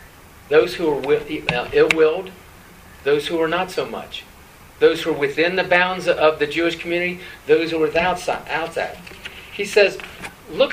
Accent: American